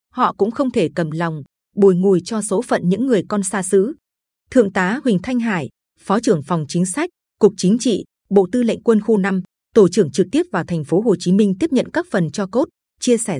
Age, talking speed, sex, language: 20-39, 235 wpm, female, Vietnamese